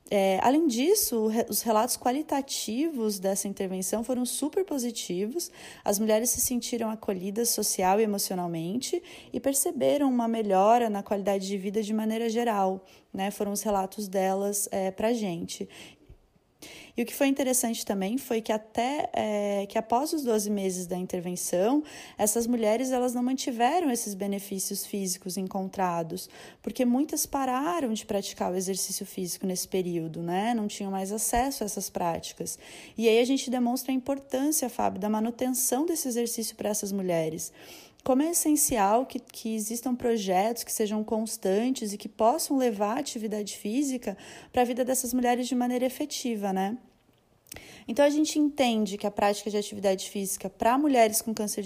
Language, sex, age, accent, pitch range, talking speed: Portuguese, female, 20-39, Brazilian, 200-255 Hz, 155 wpm